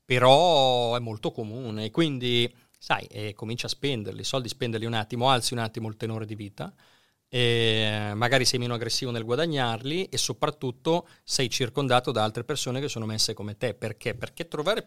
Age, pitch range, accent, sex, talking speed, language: 30-49, 115-155 Hz, native, male, 180 wpm, Italian